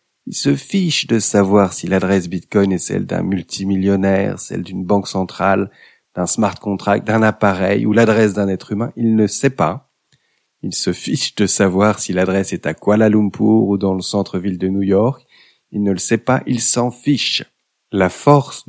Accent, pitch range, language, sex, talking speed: French, 95-115 Hz, French, male, 185 wpm